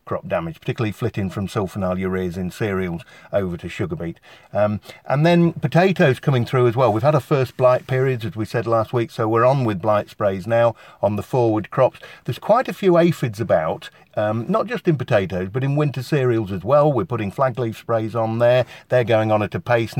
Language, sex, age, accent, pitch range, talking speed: English, male, 50-69, British, 100-135 Hz, 215 wpm